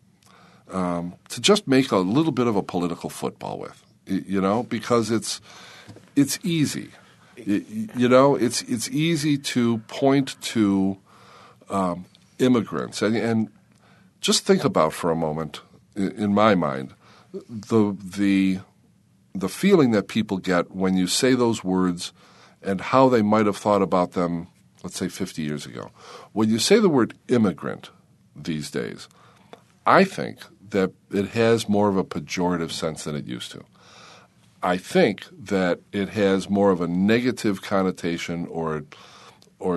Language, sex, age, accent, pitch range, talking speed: English, male, 50-69, American, 95-125 Hz, 150 wpm